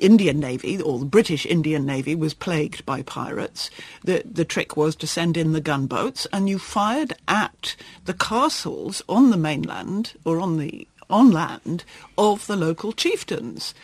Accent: British